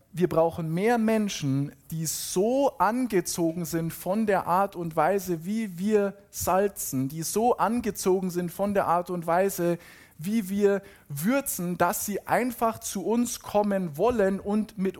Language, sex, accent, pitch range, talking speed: German, male, German, 175-210 Hz, 150 wpm